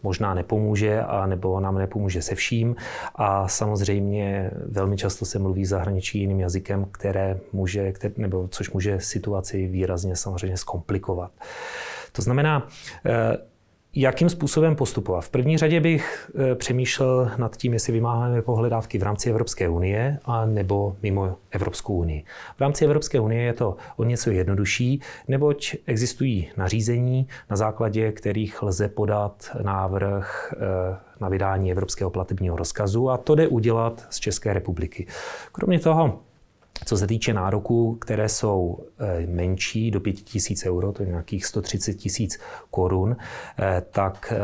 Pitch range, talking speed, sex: 95-115 Hz, 130 wpm, male